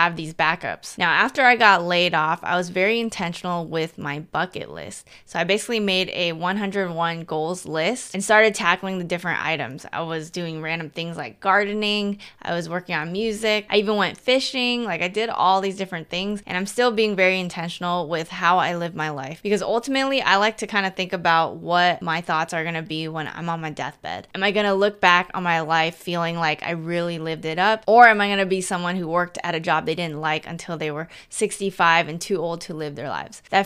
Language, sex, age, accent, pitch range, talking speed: English, female, 20-39, American, 165-200 Hz, 225 wpm